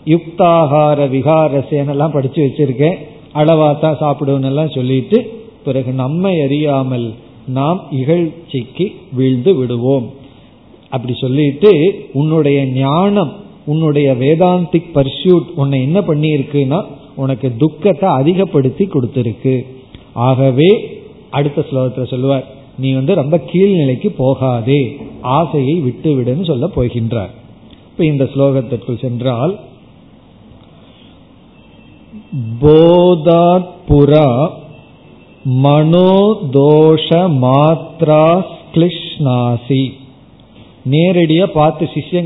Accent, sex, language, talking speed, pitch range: native, male, Tamil, 75 wpm, 130-165 Hz